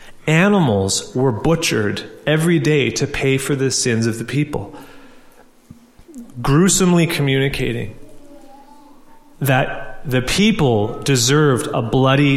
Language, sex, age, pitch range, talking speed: English, male, 30-49, 125-165 Hz, 100 wpm